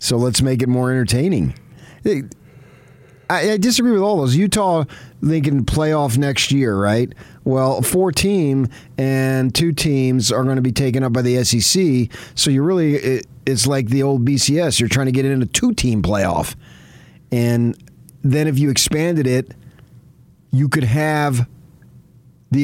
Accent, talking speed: American, 165 wpm